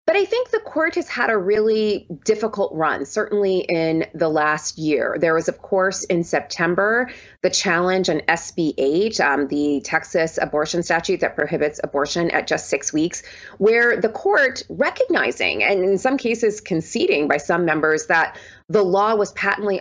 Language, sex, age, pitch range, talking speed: English, female, 30-49, 165-210 Hz, 165 wpm